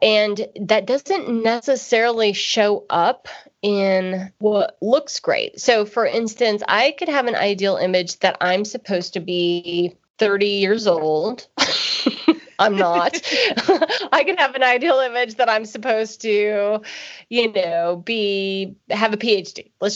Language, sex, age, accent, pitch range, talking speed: English, female, 30-49, American, 180-245 Hz, 140 wpm